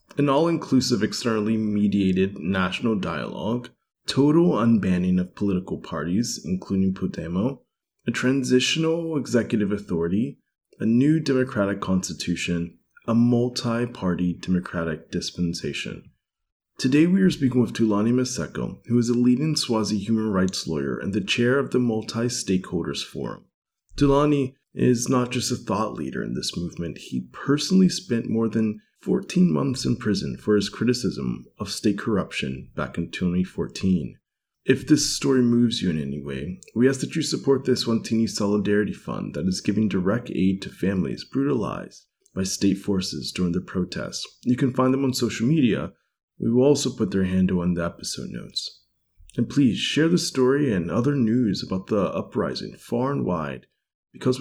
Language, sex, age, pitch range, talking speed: English, male, 30-49, 95-130 Hz, 155 wpm